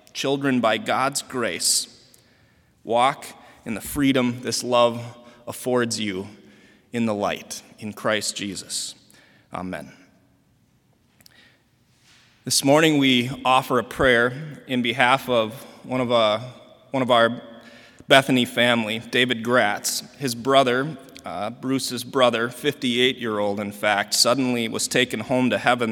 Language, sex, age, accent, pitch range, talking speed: English, male, 20-39, American, 115-130 Hz, 115 wpm